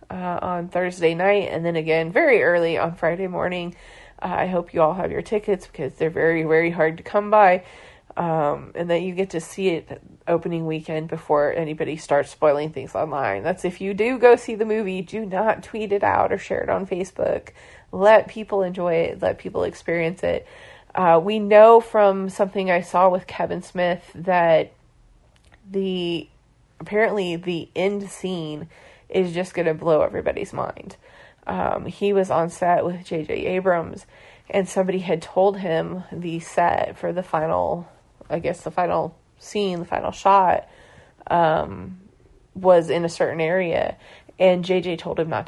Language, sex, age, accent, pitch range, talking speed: English, female, 30-49, American, 165-190 Hz, 170 wpm